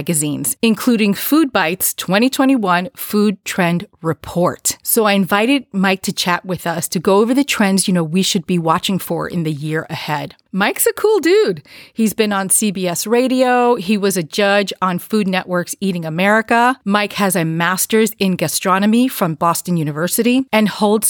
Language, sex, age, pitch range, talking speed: English, female, 30-49, 175-230 Hz, 175 wpm